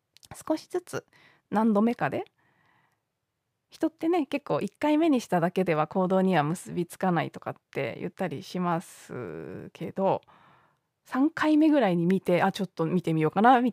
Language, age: Japanese, 20-39